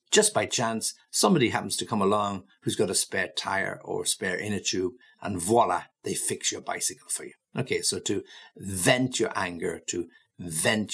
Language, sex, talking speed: English, male, 180 wpm